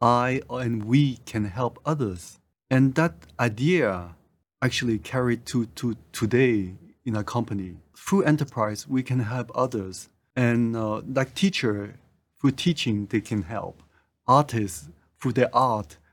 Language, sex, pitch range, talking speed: English, male, 110-130 Hz, 135 wpm